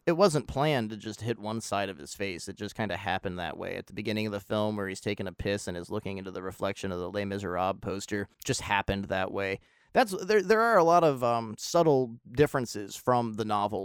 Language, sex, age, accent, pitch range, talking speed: English, male, 30-49, American, 105-150 Hz, 250 wpm